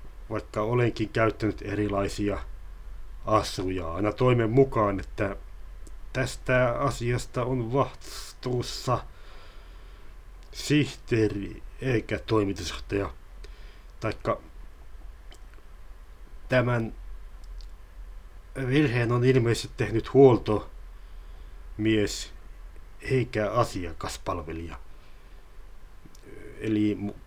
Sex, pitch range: male, 95-120 Hz